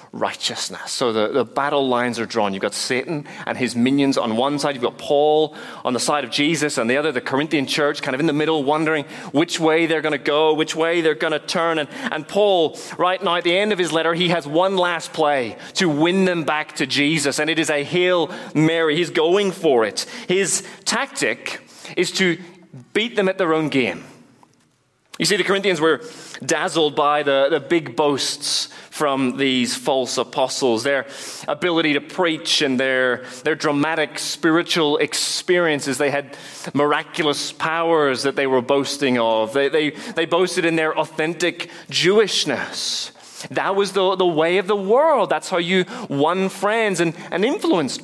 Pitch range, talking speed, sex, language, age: 145-175 Hz, 185 wpm, male, English, 30-49